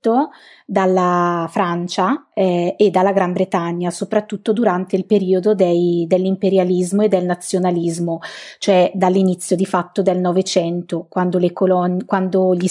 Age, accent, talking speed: 30-49, native, 115 wpm